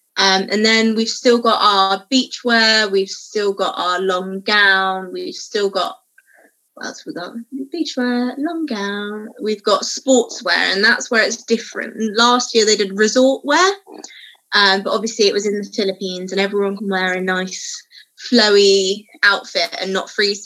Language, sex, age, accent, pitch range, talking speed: English, female, 20-39, British, 195-245 Hz, 165 wpm